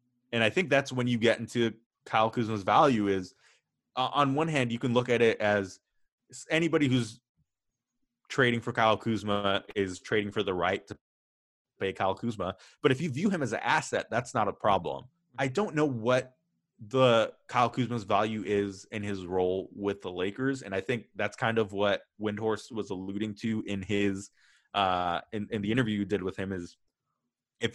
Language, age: English, 20-39